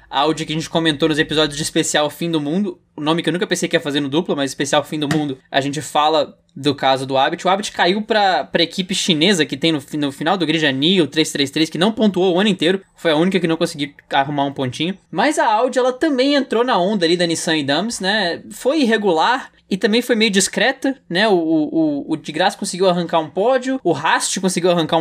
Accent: Brazilian